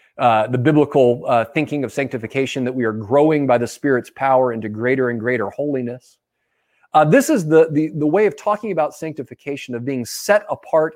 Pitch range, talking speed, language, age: 120-165 Hz, 190 wpm, English, 40-59